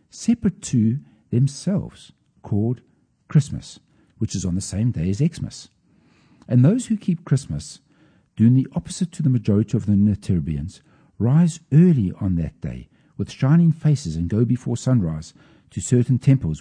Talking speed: 150 wpm